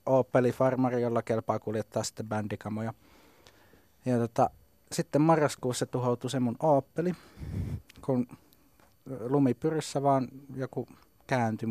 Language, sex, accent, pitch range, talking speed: Finnish, male, native, 110-135 Hz, 90 wpm